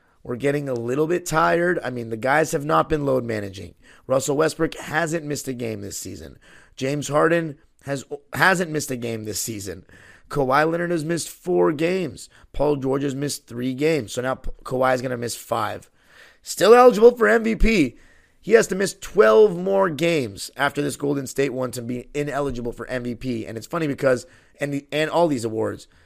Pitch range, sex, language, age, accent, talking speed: 125-160 Hz, male, English, 30-49, American, 195 wpm